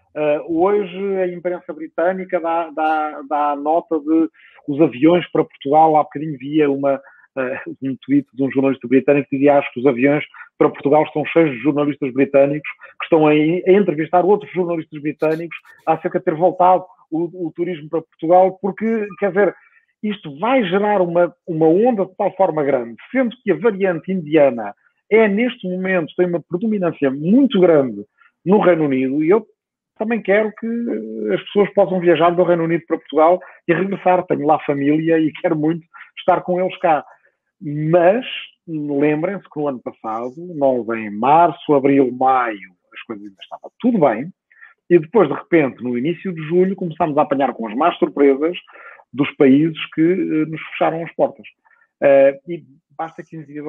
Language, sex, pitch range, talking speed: Portuguese, male, 145-185 Hz, 170 wpm